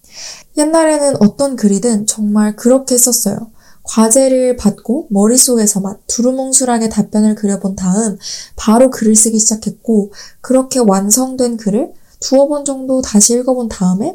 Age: 20-39